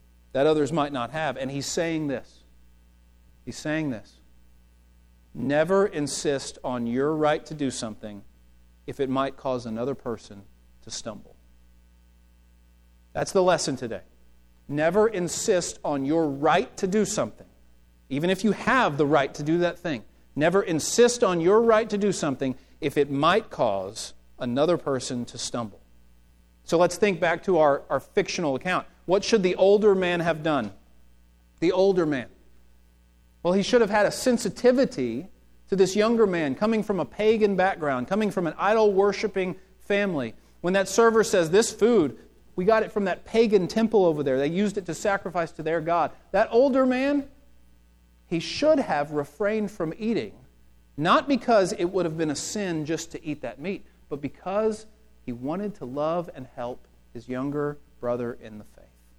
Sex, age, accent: male, 40-59, American